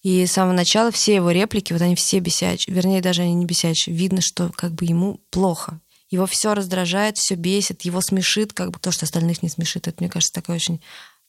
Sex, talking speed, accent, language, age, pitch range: female, 220 wpm, native, Russian, 20-39, 180-200 Hz